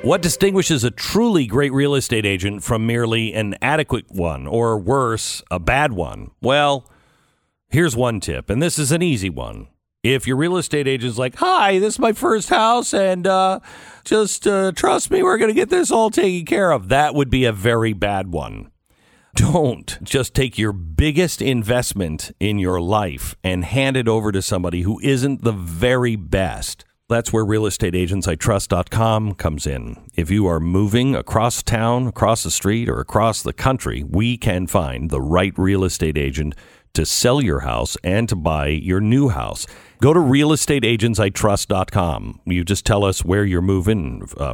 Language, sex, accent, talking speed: English, male, American, 175 wpm